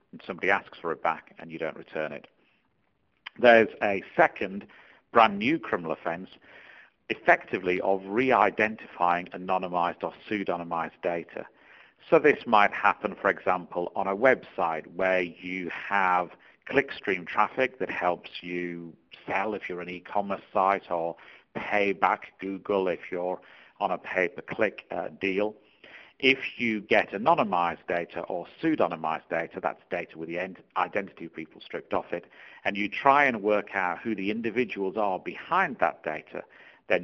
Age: 50-69